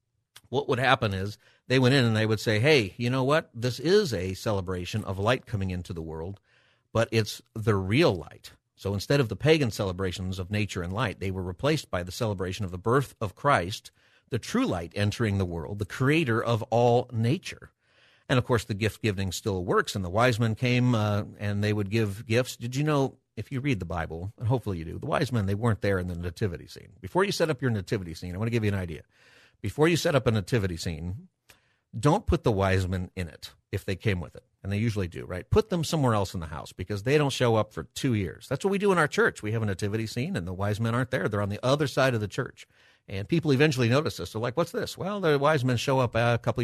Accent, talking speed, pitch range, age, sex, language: American, 255 wpm, 95-130 Hz, 50-69, male, English